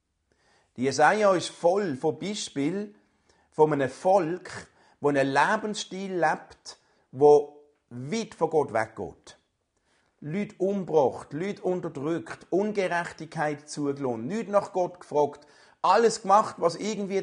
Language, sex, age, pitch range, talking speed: German, male, 50-69, 145-195 Hz, 110 wpm